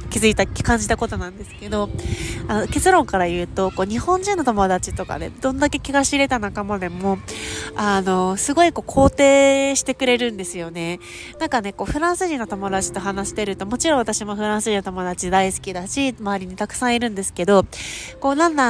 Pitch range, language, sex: 195-265 Hz, Japanese, female